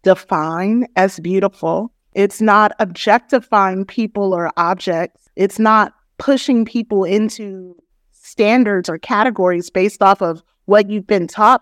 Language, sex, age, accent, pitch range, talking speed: English, female, 30-49, American, 190-240 Hz, 125 wpm